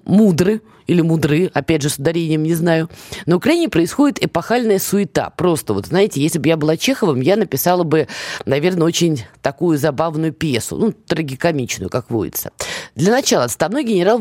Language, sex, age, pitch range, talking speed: Russian, female, 20-39, 145-205 Hz, 155 wpm